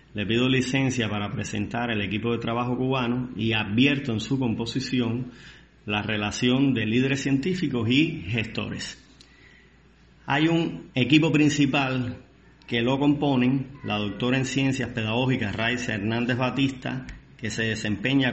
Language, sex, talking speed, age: Spanish, male, 130 wpm, 30-49